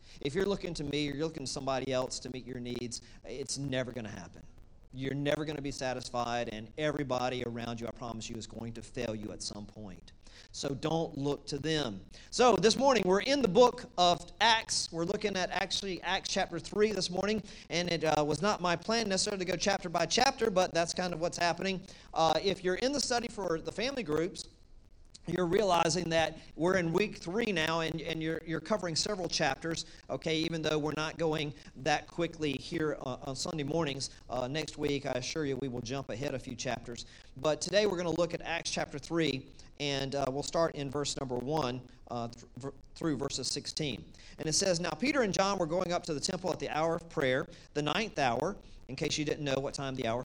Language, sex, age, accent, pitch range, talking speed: English, male, 40-59, American, 130-175 Hz, 220 wpm